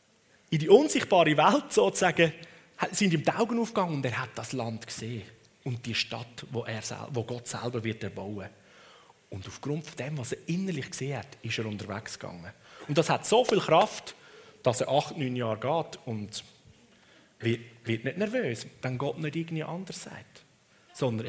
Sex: male